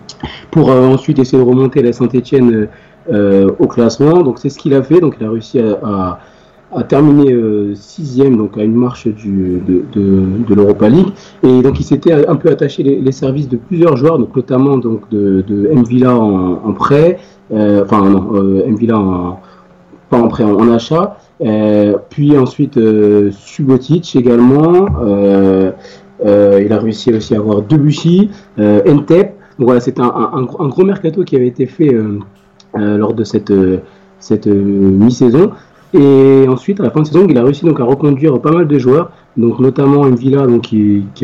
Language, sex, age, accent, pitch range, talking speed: French, male, 40-59, French, 105-140 Hz, 190 wpm